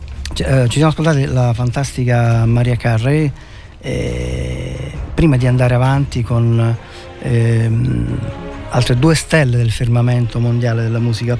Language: Italian